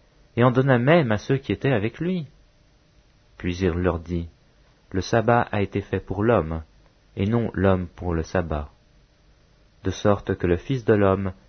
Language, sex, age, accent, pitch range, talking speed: English, male, 40-59, French, 90-115 Hz, 185 wpm